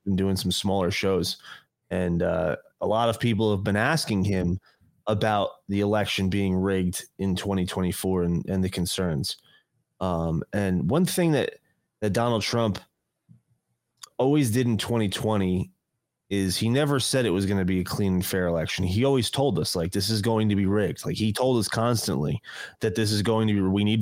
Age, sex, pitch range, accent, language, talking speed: 30-49, male, 95-115 Hz, American, English, 190 wpm